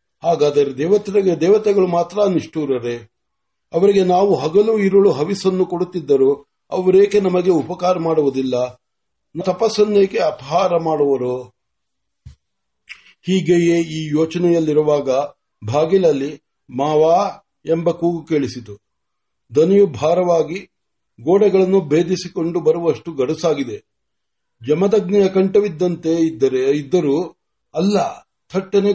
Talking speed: 35 wpm